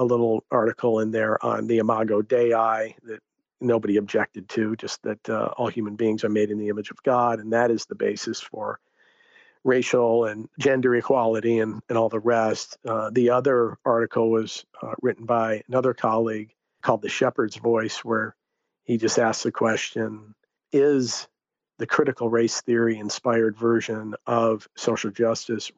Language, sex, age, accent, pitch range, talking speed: English, male, 50-69, American, 110-120 Hz, 165 wpm